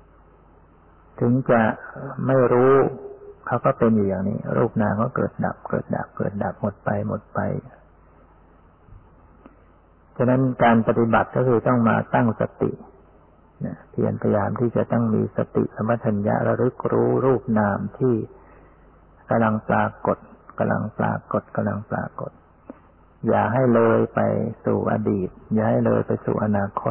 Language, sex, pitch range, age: Thai, male, 95-120 Hz, 60-79